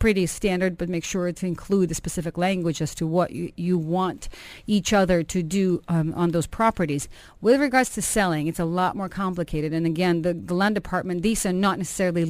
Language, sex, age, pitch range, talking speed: English, female, 40-59, 165-190 Hz, 210 wpm